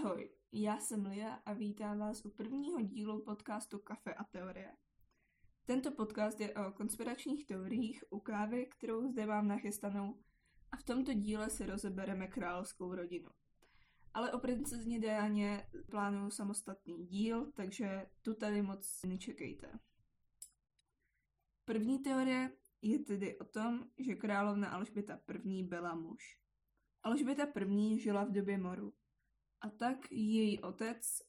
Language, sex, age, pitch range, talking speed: Czech, female, 20-39, 200-235 Hz, 130 wpm